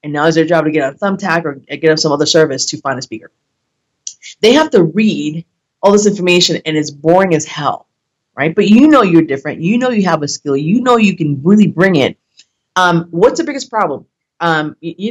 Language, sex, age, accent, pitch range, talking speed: English, female, 30-49, American, 155-200 Hz, 225 wpm